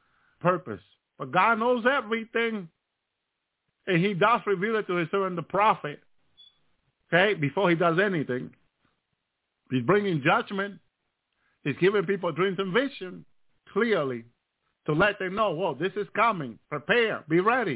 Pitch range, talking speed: 150-210 Hz, 140 wpm